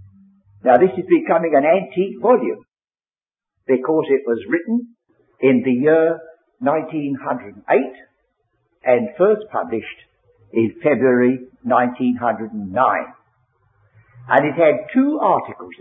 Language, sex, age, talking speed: English, male, 60-79, 100 wpm